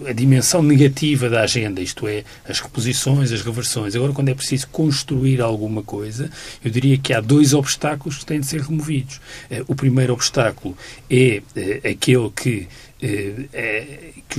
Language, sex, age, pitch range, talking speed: Portuguese, male, 40-59, 120-145 Hz, 155 wpm